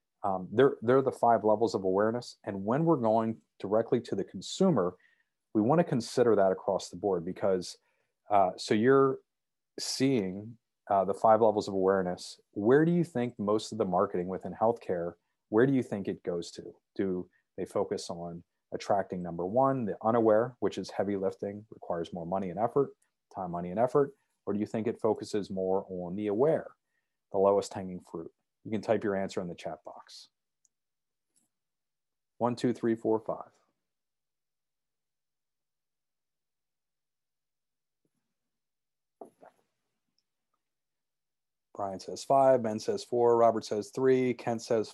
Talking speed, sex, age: 150 wpm, male, 30-49